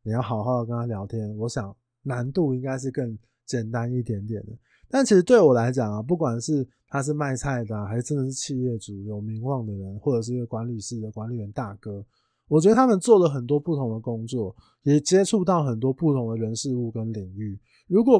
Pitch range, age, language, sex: 115-160 Hz, 20-39, Chinese, male